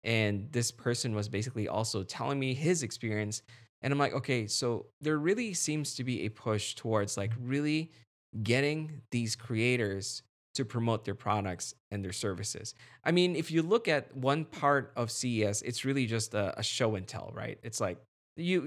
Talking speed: 180 wpm